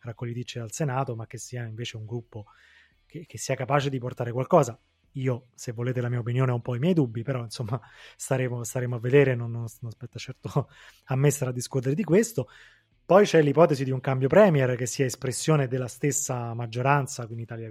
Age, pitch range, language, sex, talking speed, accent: 20-39, 120-145 Hz, Italian, male, 205 wpm, native